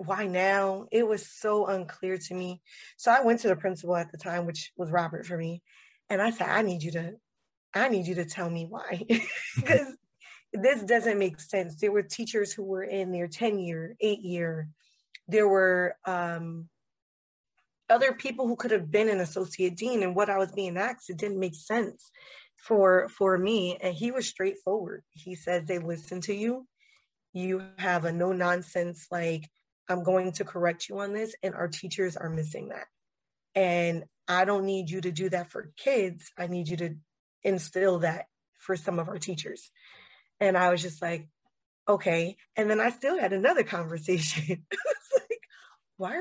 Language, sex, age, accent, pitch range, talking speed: English, female, 20-39, American, 175-215 Hz, 185 wpm